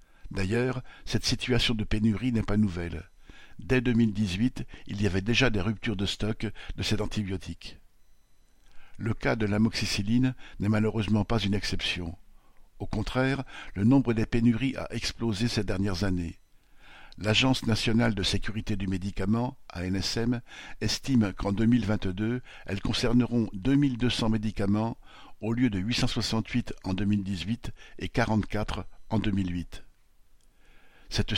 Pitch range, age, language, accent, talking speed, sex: 100-115 Hz, 60-79, French, French, 125 wpm, male